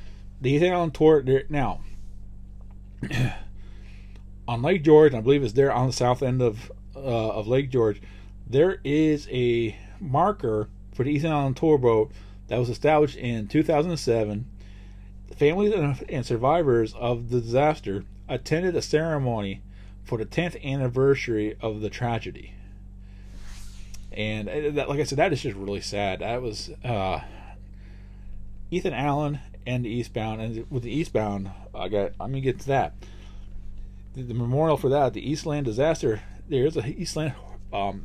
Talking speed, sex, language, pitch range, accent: 150 wpm, male, English, 95-135 Hz, American